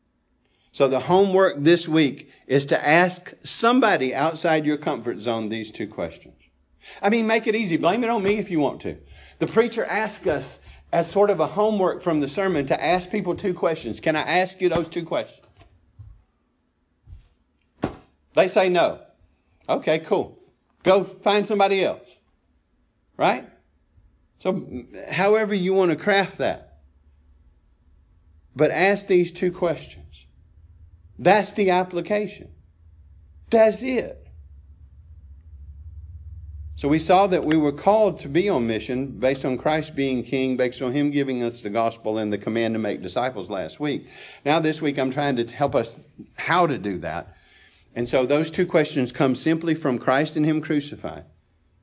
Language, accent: English, American